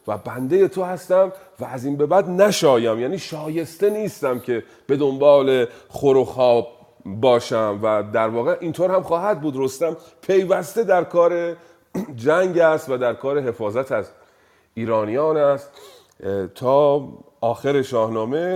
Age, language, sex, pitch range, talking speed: 40-59, Persian, male, 110-165 Hz, 140 wpm